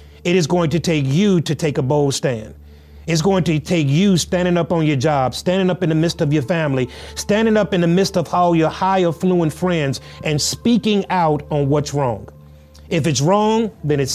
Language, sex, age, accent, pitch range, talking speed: English, male, 30-49, American, 140-180 Hz, 215 wpm